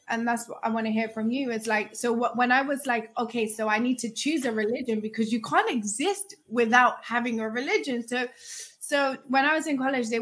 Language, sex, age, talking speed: English, female, 20-39, 240 wpm